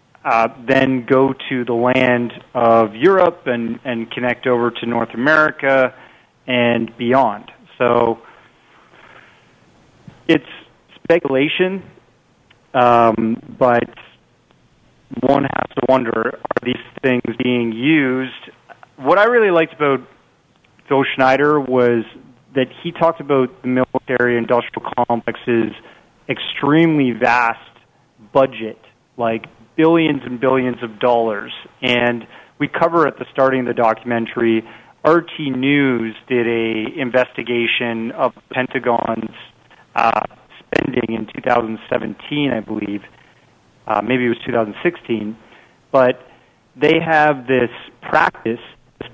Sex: male